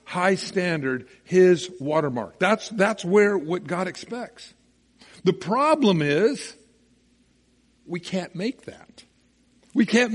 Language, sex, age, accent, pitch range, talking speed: English, male, 60-79, American, 145-210 Hz, 110 wpm